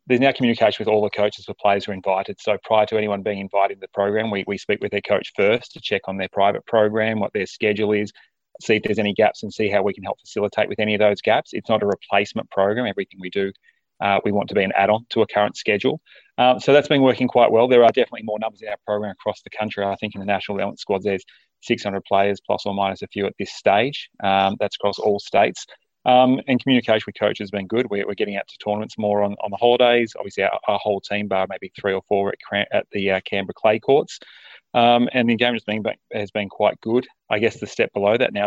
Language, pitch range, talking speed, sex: English, 100-115 Hz, 260 wpm, male